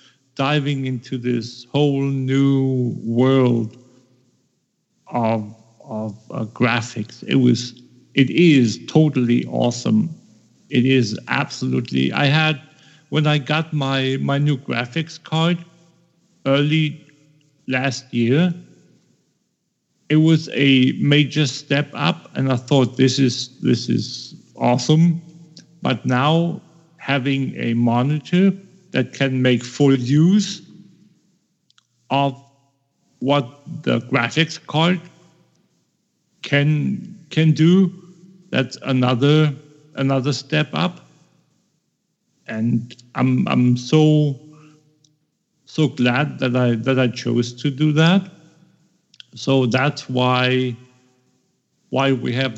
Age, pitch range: 50-69, 125-155 Hz